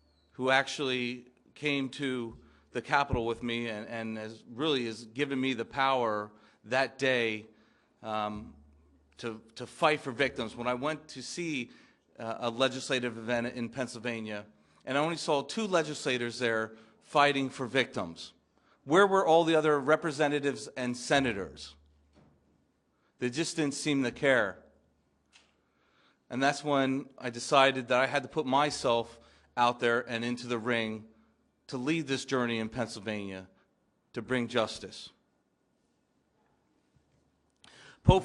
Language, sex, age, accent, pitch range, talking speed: Italian, male, 40-59, American, 115-140 Hz, 135 wpm